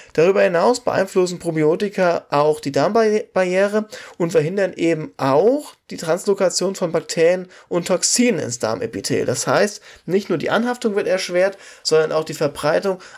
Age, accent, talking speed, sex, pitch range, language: 20-39, German, 140 wpm, male, 155-200 Hz, German